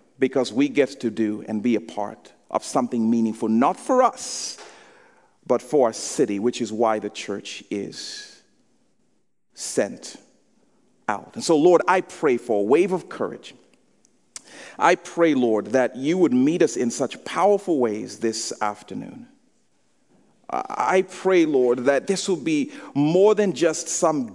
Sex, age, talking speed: male, 40-59, 155 wpm